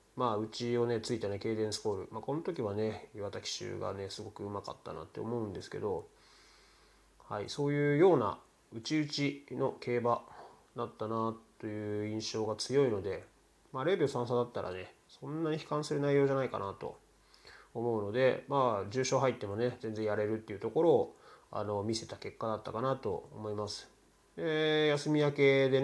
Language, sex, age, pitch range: Japanese, male, 20-39, 105-140 Hz